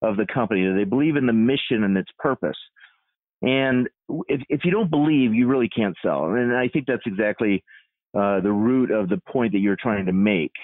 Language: English